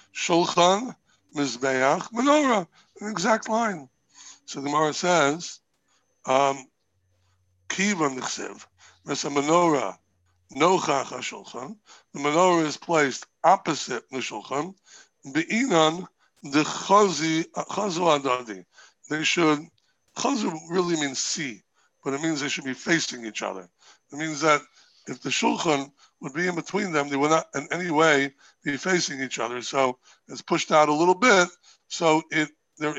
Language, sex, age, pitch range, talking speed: English, male, 60-79, 135-175 Hz, 135 wpm